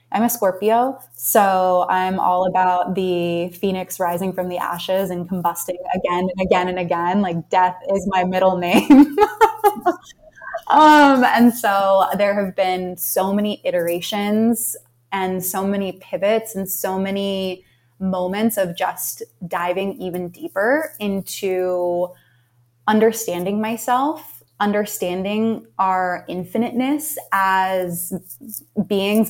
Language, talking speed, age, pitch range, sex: English, 115 wpm, 20-39, 180-205 Hz, female